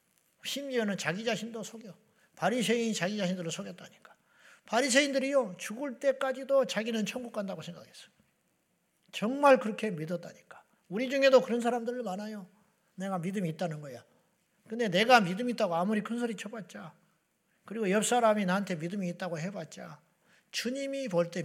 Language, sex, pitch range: Korean, male, 180-235 Hz